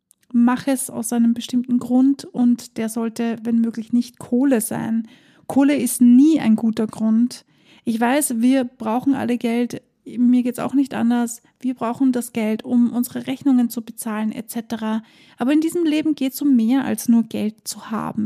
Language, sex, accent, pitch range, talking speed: German, female, German, 235-265 Hz, 180 wpm